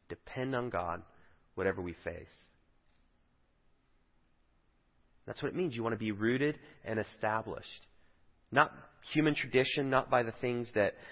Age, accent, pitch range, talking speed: 30-49, American, 85-130 Hz, 135 wpm